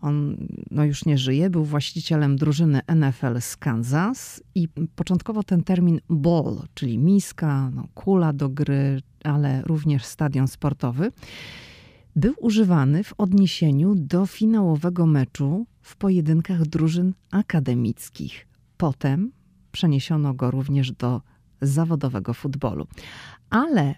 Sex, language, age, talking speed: female, Polish, 40-59, 110 wpm